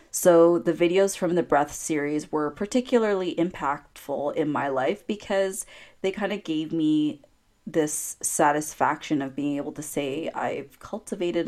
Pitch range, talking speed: 150-180 Hz, 145 wpm